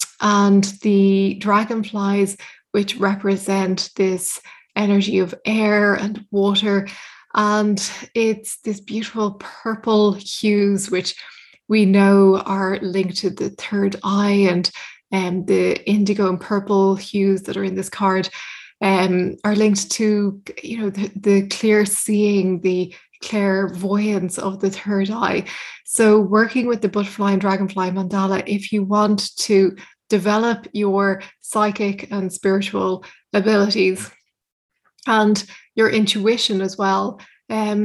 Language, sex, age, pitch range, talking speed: English, female, 20-39, 195-210 Hz, 125 wpm